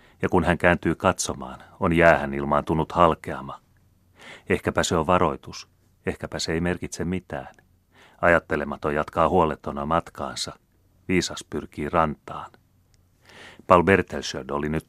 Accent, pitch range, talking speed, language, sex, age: native, 75-90 Hz, 120 wpm, Finnish, male, 30-49